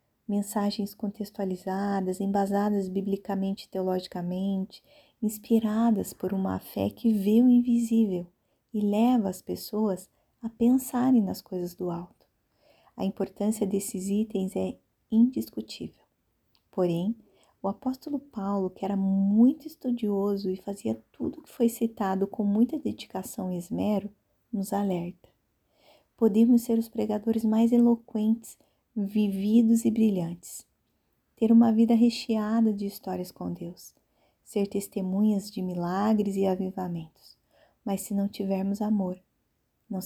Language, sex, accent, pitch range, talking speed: Portuguese, female, Brazilian, 190-225 Hz, 120 wpm